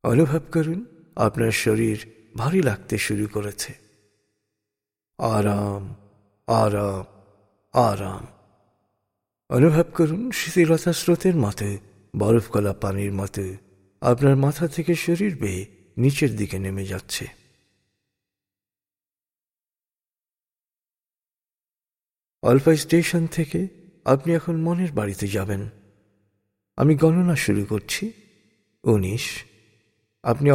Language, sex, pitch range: Bengali, male, 100-150 Hz